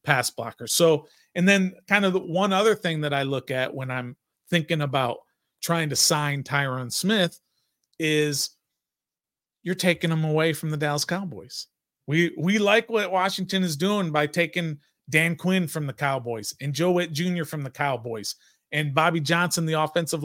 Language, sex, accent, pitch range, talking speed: English, male, American, 140-175 Hz, 175 wpm